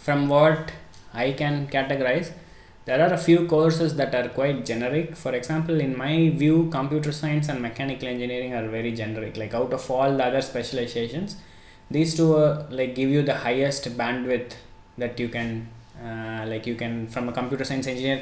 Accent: Indian